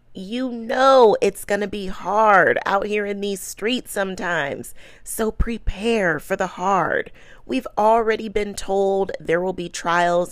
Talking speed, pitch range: 150 wpm, 170-230 Hz